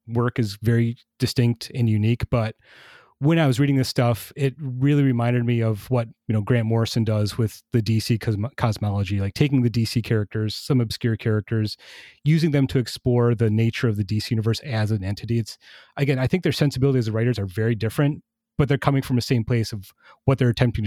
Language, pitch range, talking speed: English, 110-135 Hz, 205 wpm